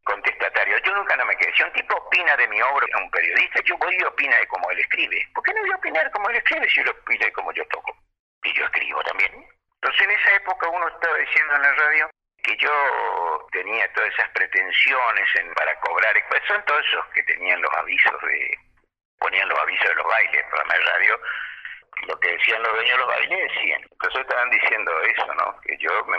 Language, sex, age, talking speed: Spanish, male, 50-69, 230 wpm